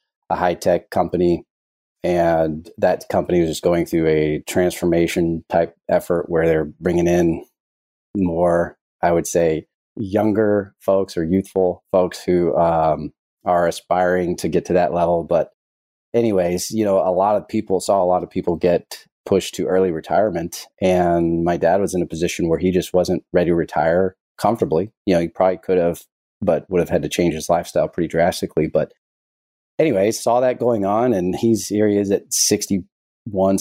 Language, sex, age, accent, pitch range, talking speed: English, male, 30-49, American, 85-95 Hz, 175 wpm